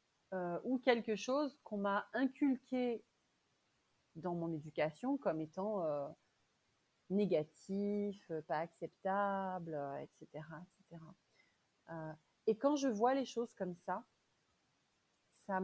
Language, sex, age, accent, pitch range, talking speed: French, female, 30-49, French, 160-220 Hz, 110 wpm